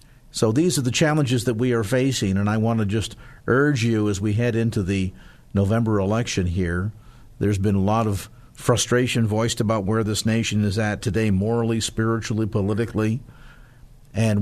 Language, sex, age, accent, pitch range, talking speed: English, male, 50-69, American, 105-130 Hz, 175 wpm